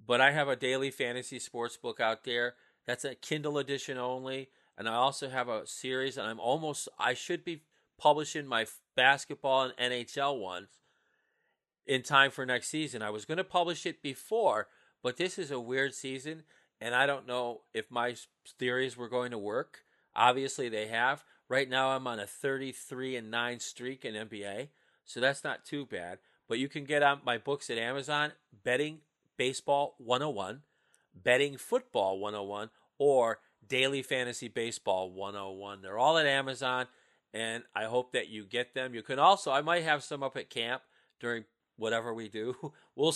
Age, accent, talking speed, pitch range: 40-59, American, 175 wpm, 115-140 Hz